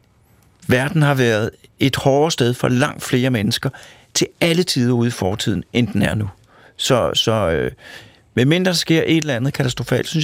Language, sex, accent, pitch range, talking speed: Danish, male, native, 125-155 Hz, 180 wpm